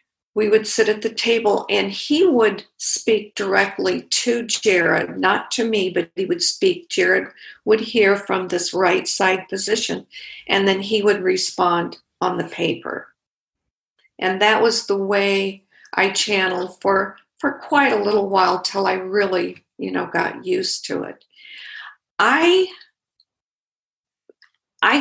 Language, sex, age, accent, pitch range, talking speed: English, female, 50-69, American, 190-230 Hz, 145 wpm